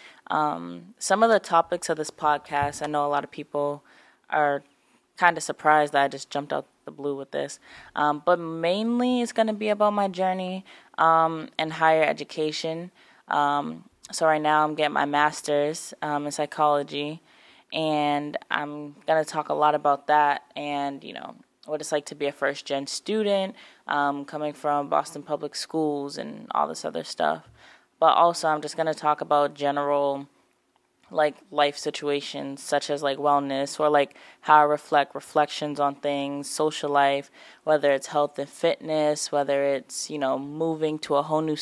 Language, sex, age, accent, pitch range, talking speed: English, female, 20-39, American, 145-155 Hz, 175 wpm